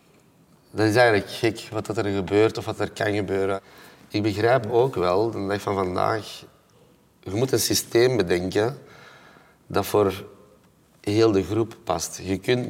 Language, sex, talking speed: Dutch, male, 155 wpm